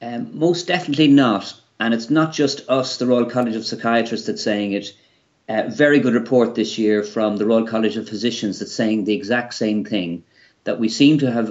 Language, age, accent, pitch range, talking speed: English, 40-59, Irish, 105-130 Hz, 215 wpm